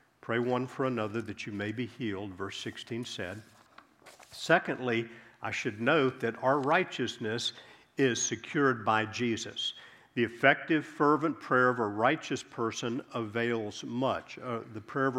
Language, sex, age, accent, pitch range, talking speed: English, male, 50-69, American, 105-130 Hz, 145 wpm